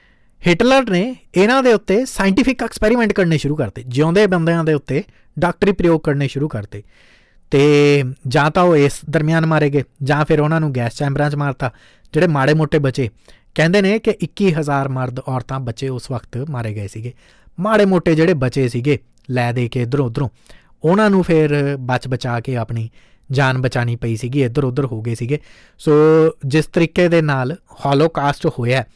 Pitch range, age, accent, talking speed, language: 130-155 Hz, 20-39, Indian, 90 wpm, English